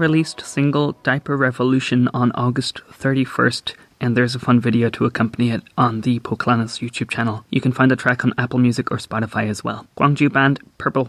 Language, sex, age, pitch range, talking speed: English, male, 20-39, 120-135 Hz, 190 wpm